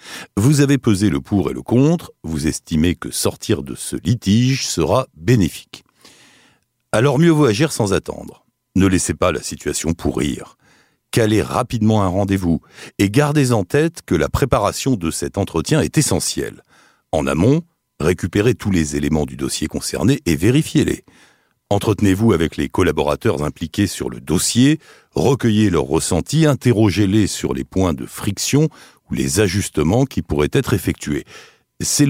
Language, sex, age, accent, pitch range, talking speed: French, male, 60-79, French, 90-140 Hz, 150 wpm